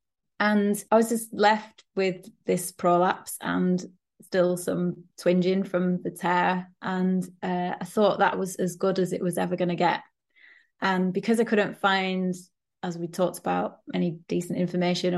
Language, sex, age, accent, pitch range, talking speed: English, female, 20-39, British, 180-220 Hz, 165 wpm